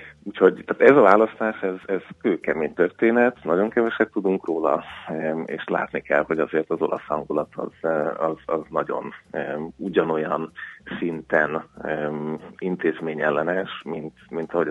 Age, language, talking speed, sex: 30-49, Hungarian, 135 wpm, male